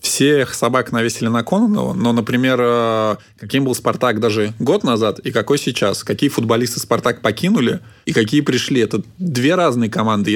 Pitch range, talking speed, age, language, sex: 110-125 Hz, 155 wpm, 20-39, Russian, male